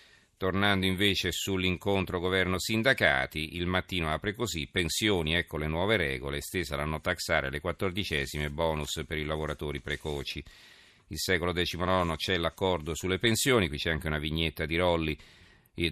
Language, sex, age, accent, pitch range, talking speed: Italian, male, 40-59, native, 80-95 Hz, 145 wpm